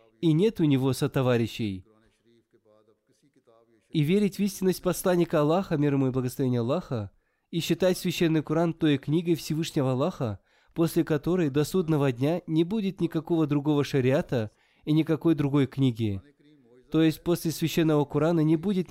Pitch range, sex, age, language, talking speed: 130-170 Hz, male, 20-39, Russian, 145 wpm